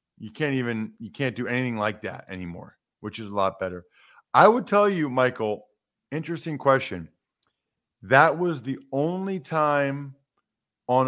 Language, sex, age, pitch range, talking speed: English, male, 40-59, 105-140 Hz, 150 wpm